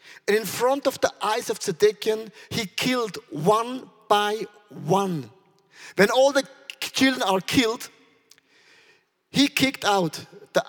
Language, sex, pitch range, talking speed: English, male, 180-255 Hz, 130 wpm